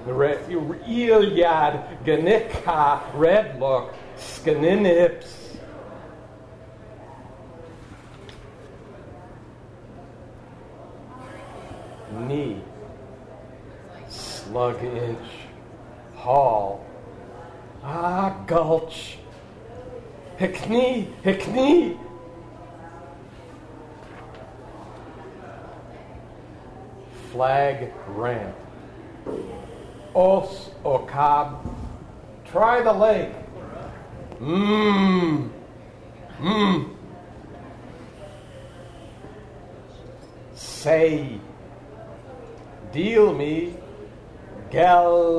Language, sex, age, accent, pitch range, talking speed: English, male, 40-59, American, 125-175 Hz, 35 wpm